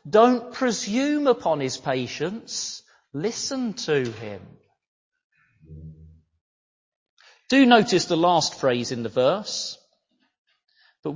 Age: 40-59